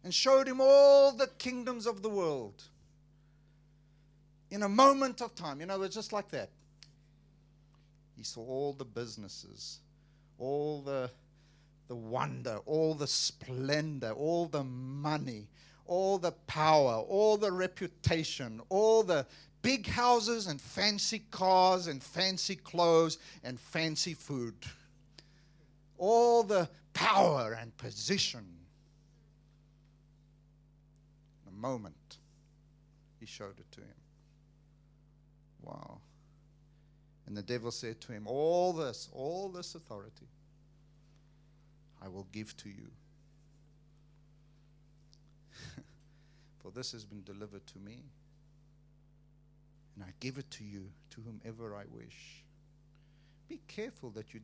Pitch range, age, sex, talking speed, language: 130-155 Hz, 50-69, male, 115 wpm, English